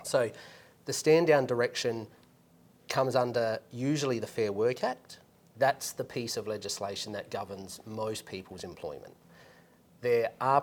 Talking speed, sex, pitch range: 135 wpm, male, 105-130 Hz